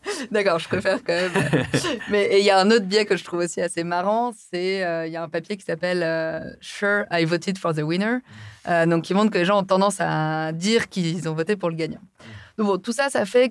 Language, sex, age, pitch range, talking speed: French, female, 30-49, 165-210 Hz, 260 wpm